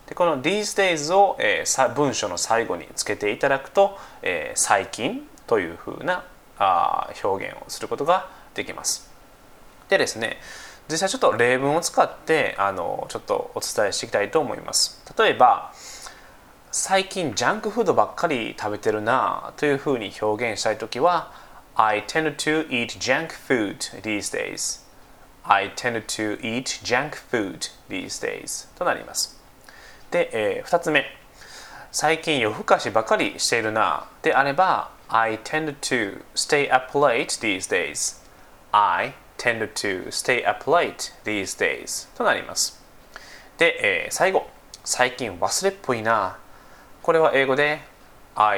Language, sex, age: Japanese, male, 20-39